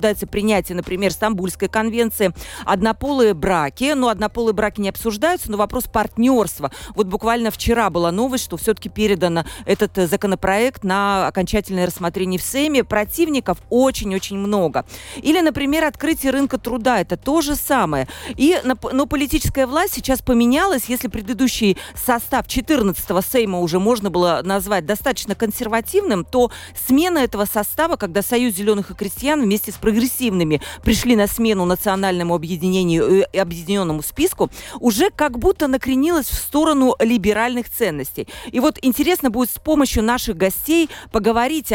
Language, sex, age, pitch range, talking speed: Russian, female, 40-59, 195-260 Hz, 135 wpm